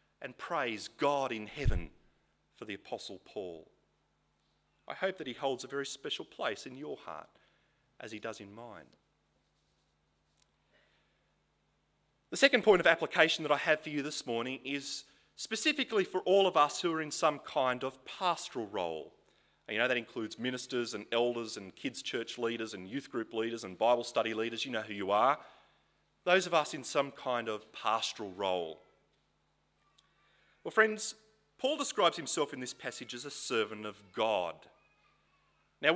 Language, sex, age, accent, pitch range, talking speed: English, male, 30-49, Australian, 115-165 Hz, 165 wpm